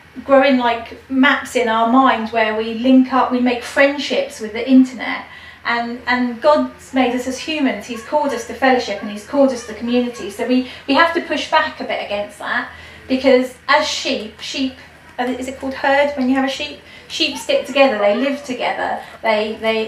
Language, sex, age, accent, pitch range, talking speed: English, female, 30-49, British, 230-270 Hz, 200 wpm